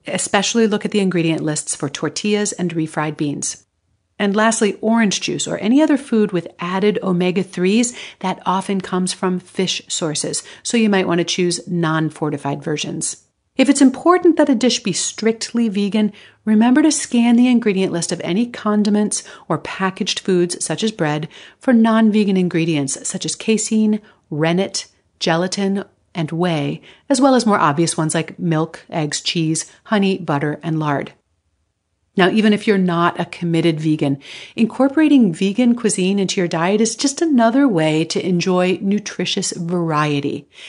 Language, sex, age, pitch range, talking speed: English, female, 40-59, 165-220 Hz, 155 wpm